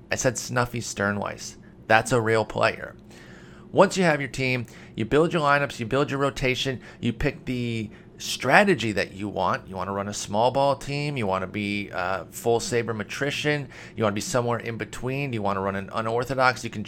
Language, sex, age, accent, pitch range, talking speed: English, male, 30-49, American, 110-135 Hz, 210 wpm